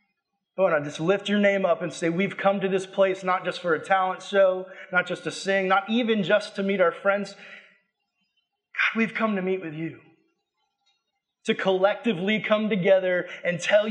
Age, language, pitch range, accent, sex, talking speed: 30-49, English, 175-210 Hz, American, male, 195 wpm